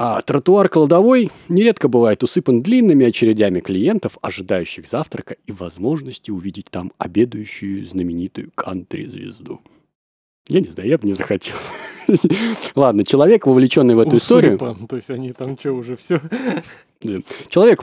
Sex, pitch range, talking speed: male, 105-165 Hz, 110 wpm